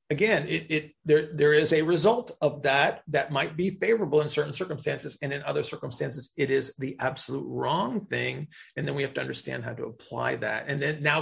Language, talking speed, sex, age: English, 215 wpm, male, 40-59